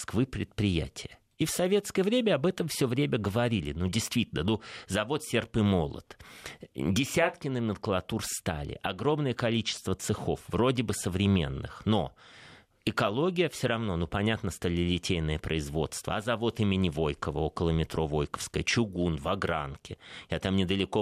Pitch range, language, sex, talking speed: 85-145 Hz, Russian, male, 135 wpm